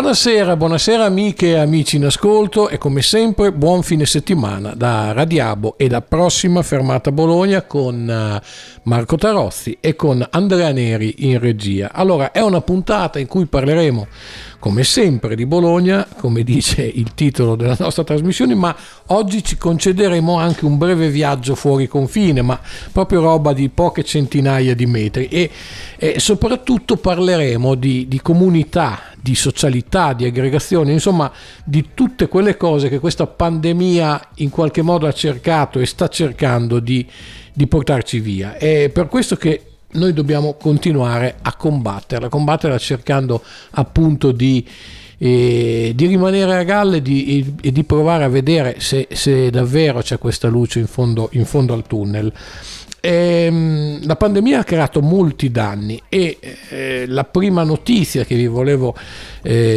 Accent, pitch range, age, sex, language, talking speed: native, 125-170 Hz, 50-69, male, Italian, 150 wpm